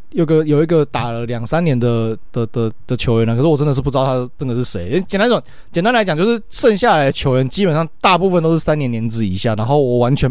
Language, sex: Chinese, male